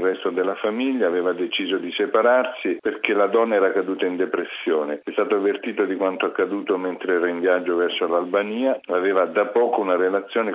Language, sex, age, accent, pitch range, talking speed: Italian, male, 50-69, native, 90-120 Hz, 180 wpm